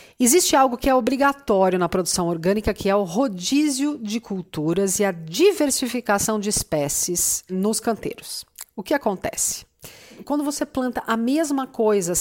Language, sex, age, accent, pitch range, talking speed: Portuguese, female, 40-59, Brazilian, 180-250 Hz, 150 wpm